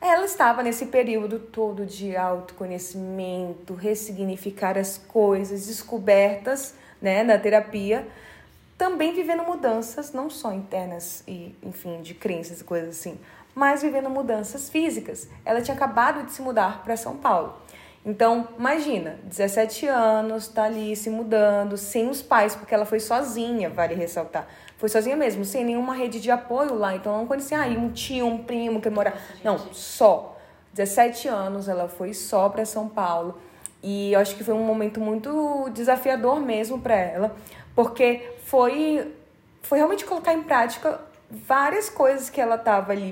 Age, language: 20-39, Portuguese